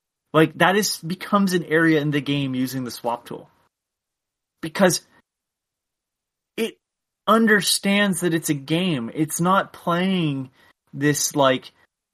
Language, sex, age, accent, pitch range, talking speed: English, male, 30-49, American, 140-175 Hz, 125 wpm